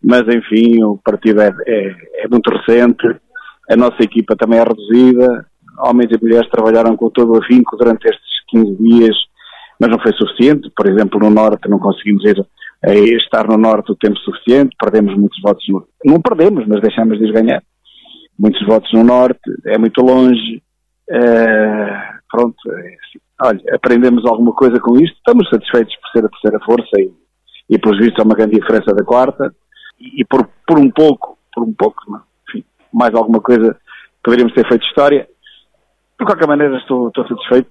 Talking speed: 160 wpm